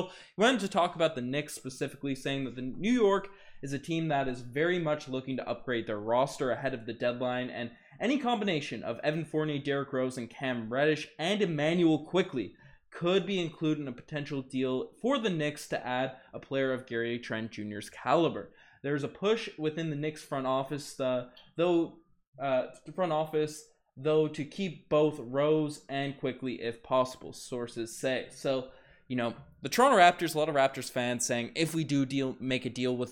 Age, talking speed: 20-39, 190 wpm